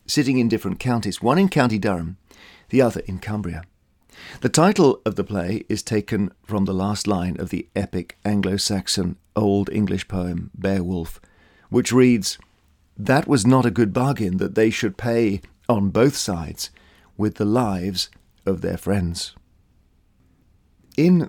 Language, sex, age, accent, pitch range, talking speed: English, male, 50-69, British, 95-130 Hz, 150 wpm